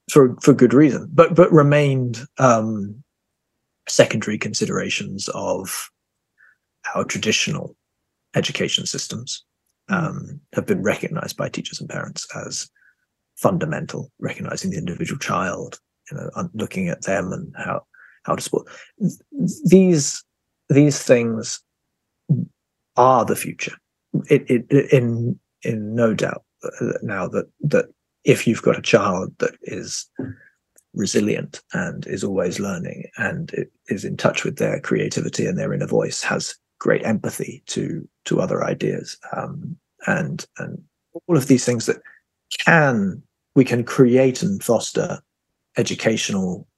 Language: English